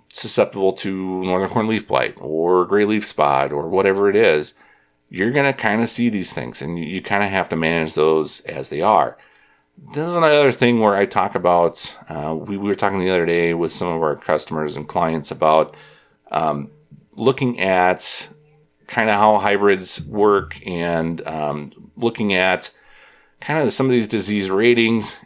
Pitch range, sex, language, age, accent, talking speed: 85-105 Hz, male, English, 40-59, American, 185 wpm